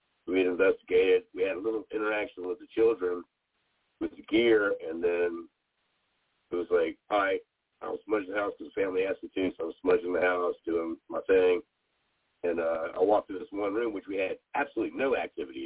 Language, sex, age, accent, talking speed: English, male, 50-69, American, 205 wpm